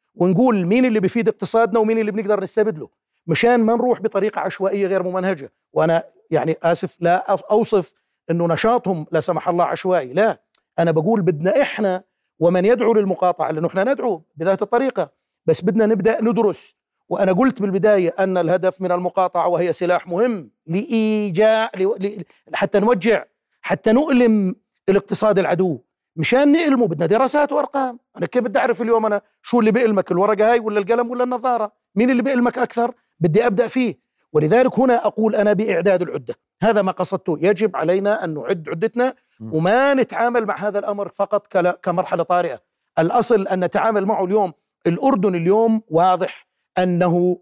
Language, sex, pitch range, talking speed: Arabic, male, 180-230 Hz, 150 wpm